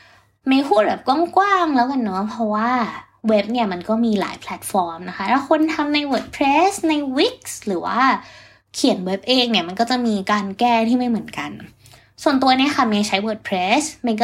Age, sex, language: 20-39, female, Thai